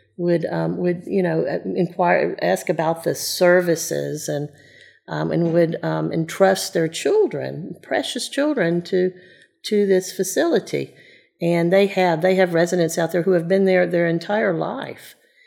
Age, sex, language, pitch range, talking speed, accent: 50-69, female, English, 160-190 Hz, 150 wpm, American